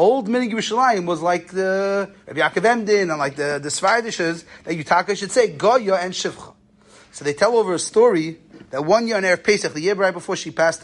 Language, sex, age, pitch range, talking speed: English, male, 30-49, 160-210 Hz, 215 wpm